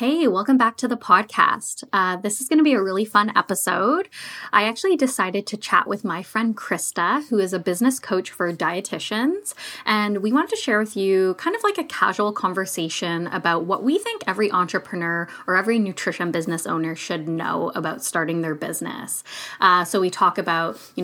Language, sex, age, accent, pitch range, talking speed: English, female, 10-29, American, 185-245 Hz, 195 wpm